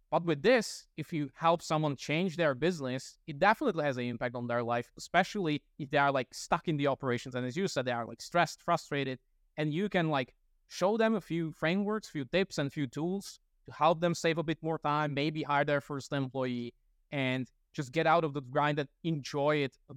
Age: 20-39